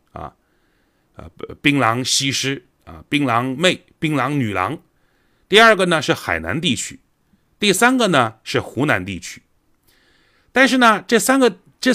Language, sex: Chinese, male